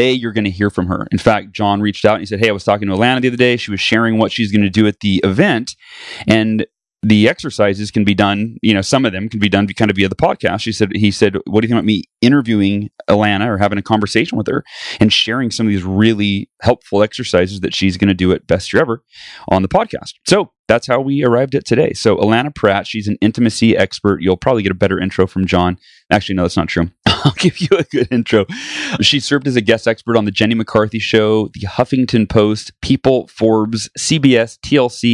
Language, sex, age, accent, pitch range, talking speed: English, male, 30-49, American, 100-115 Hz, 245 wpm